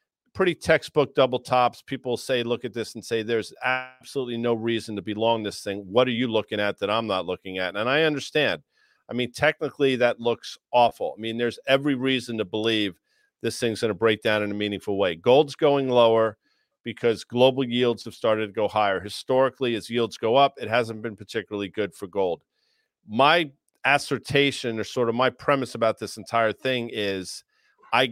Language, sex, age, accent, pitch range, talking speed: English, male, 40-59, American, 110-130 Hz, 195 wpm